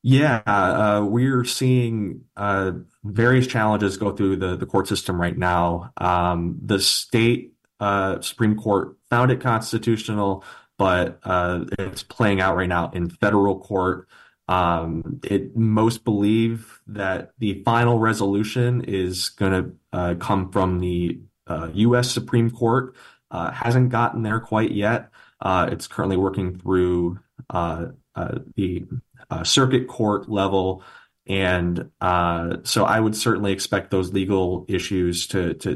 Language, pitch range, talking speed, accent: English, 90-110 Hz, 140 wpm, American